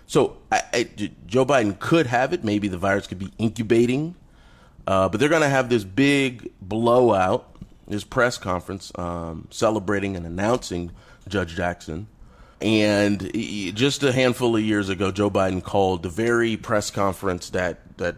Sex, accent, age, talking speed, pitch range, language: male, American, 30-49, 150 wpm, 90-120 Hz, English